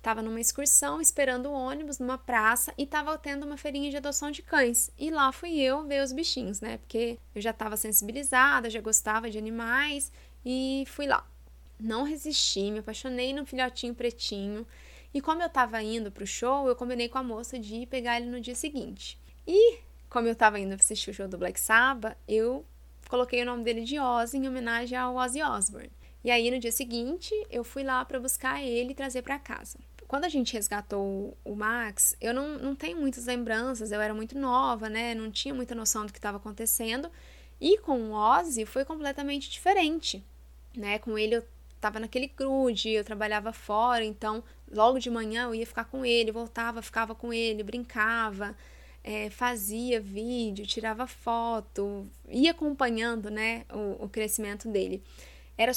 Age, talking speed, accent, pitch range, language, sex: 20-39, 180 wpm, Brazilian, 220-265 Hz, Portuguese, female